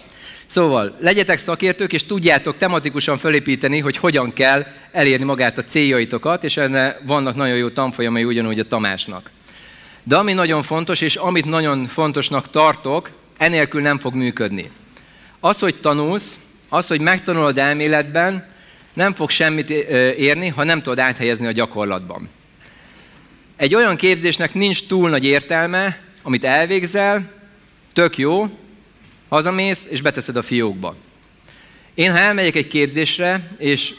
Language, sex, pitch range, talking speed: Hungarian, male, 130-170 Hz, 130 wpm